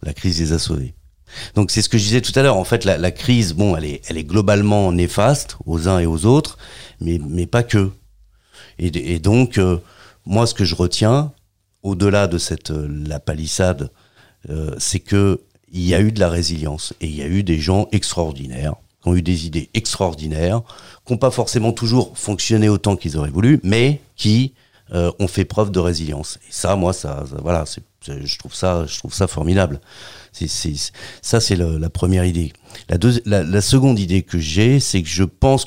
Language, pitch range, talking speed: French, 80-110 Hz, 210 wpm